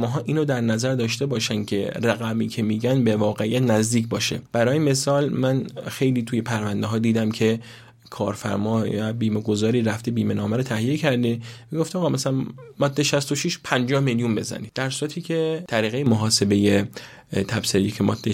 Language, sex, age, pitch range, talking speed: Persian, male, 30-49, 110-130 Hz, 160 wpm